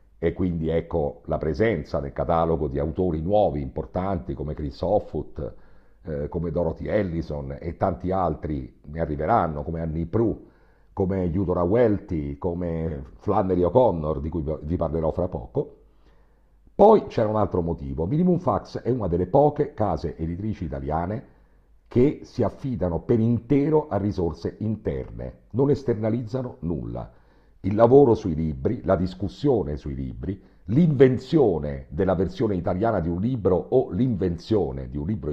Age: 50-69